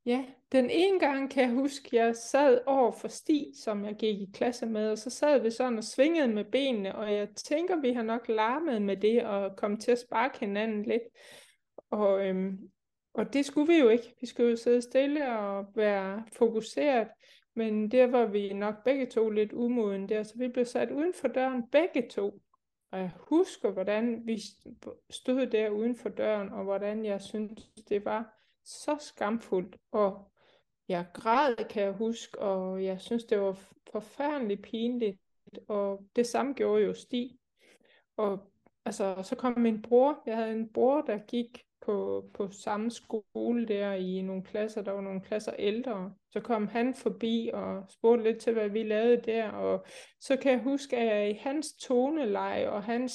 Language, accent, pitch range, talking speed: Danish, native, 210-250 Hz, 185 wpm